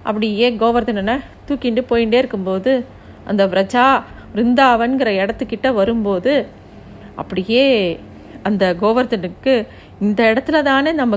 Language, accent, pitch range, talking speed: Tamil, native, 210-270 Hz, 85 wpm